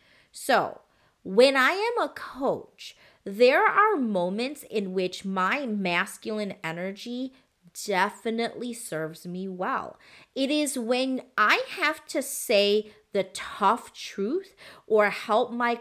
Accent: American